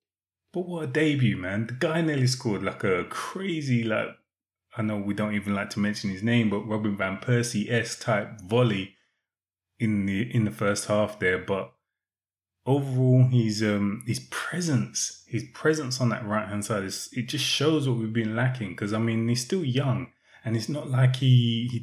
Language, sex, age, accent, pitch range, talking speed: English, male, 20-39, British, 105-125 Hz, 185 wpm